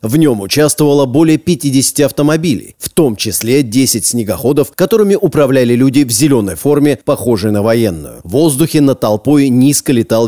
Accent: native